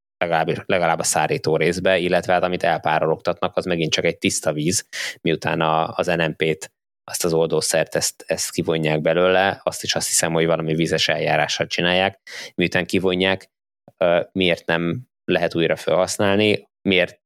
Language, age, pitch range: Hungarian, 20-39, 80-90 Hz